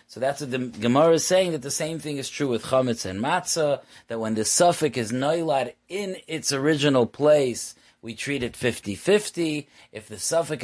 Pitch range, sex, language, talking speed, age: 120-165 Hz, male, English, 190 wpm, 30-49